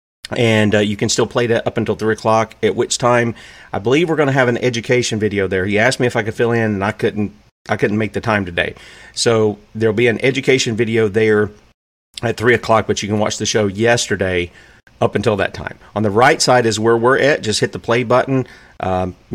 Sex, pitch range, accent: male, 105-125 Hz, American